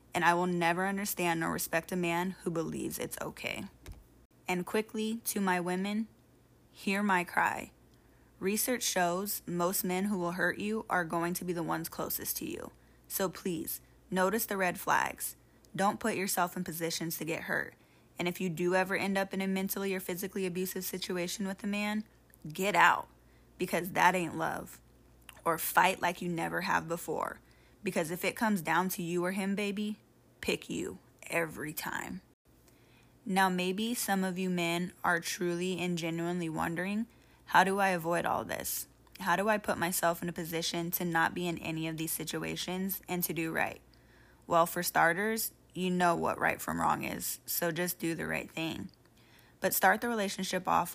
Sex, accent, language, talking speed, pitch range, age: female, American, English, 180 wpm, 170-195 Hz, 10-29